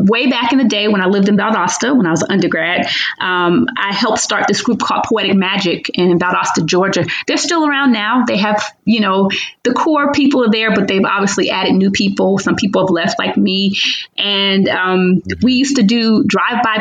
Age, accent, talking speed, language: 30-49, American, 210 wpm, English